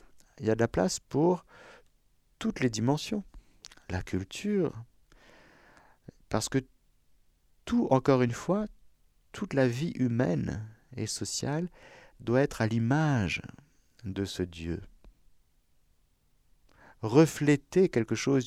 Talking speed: 110 wpm